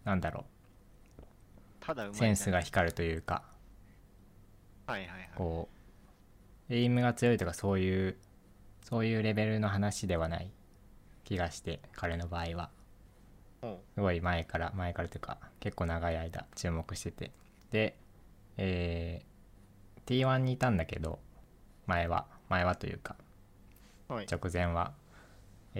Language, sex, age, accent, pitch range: Japanese, male, 20-39, native, 90-110 Hz